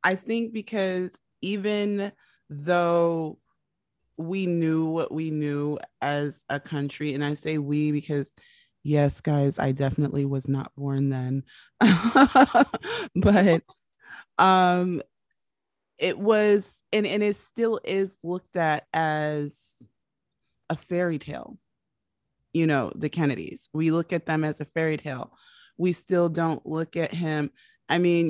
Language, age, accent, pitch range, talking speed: English, 20-39, American, 145-175 Hz, 130 wpm